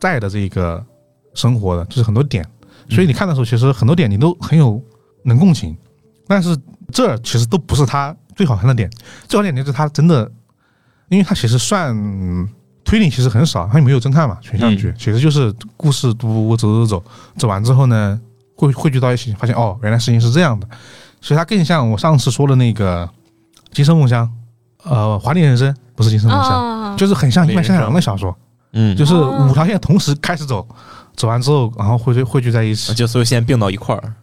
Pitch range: 110-140 Hz